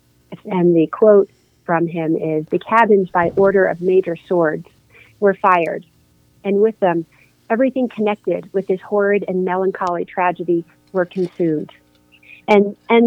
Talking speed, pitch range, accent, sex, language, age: 140 wpm, 155-195 Hz, American, female, English, 40-59